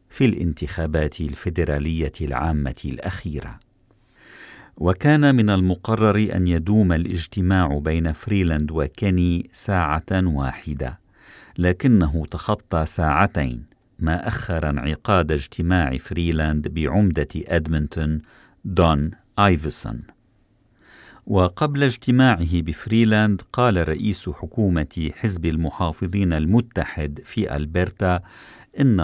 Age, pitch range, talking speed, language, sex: 50-69, 80-95 Hz, 85 wpm, Arabic, male